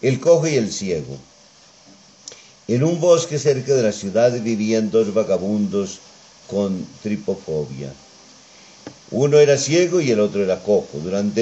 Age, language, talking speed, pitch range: 50-69, Spanish, 135 wpm, 100-130 Hz